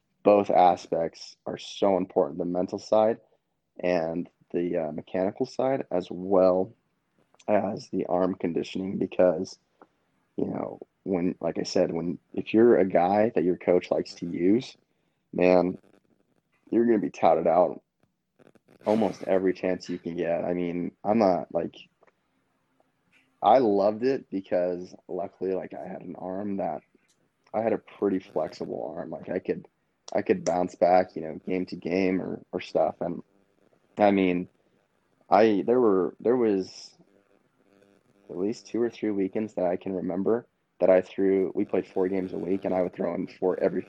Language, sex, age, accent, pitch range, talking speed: English, male, 20-39, American, 90-100 Hz, 165 wpm